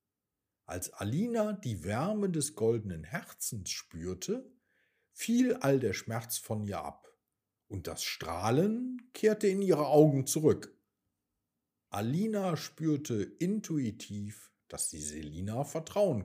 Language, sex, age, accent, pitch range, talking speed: German, male, 50-69, German, 100-165 Hz, 110 wpm